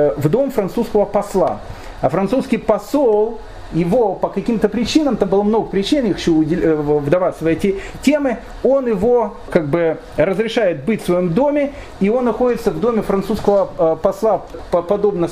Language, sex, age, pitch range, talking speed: Russian, male, 40-59, 160-215 Hz, 150 wpm